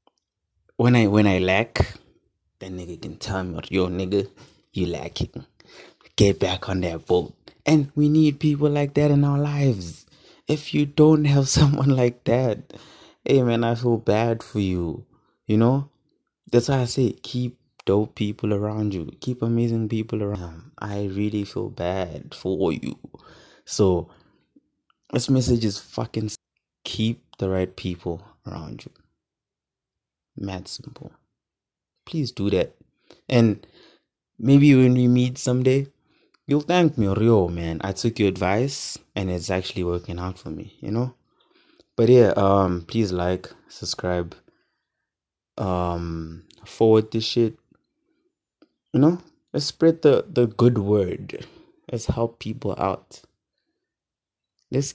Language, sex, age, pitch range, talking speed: English, male, 20-39, 95-130 Hz, 140 wpm